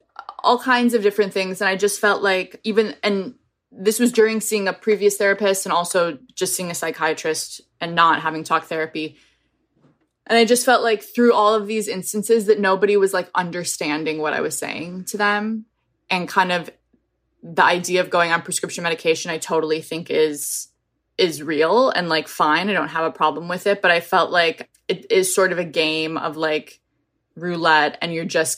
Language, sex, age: English, female, 20-39